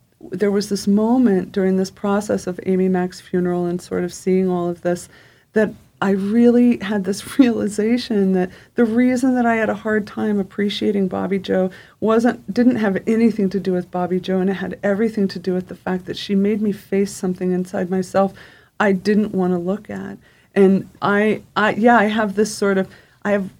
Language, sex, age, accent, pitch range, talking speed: English, female, 40-59, American, 185-210 Hz, 200 wpm